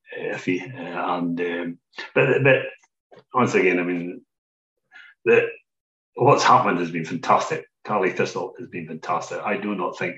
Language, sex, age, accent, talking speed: English, male, 40-59, British, 140 wpm